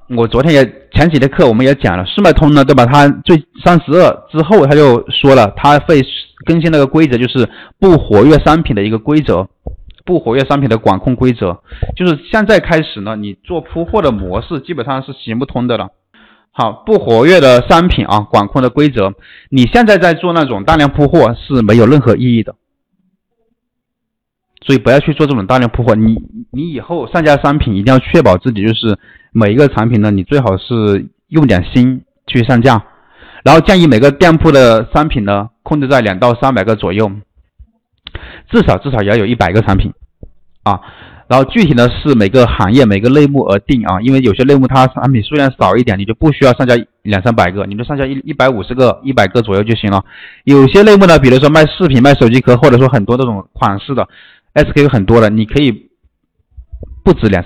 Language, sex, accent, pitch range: Chinese, male, native, 110-150 Hz